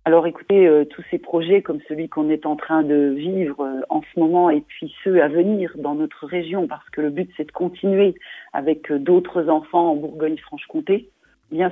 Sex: female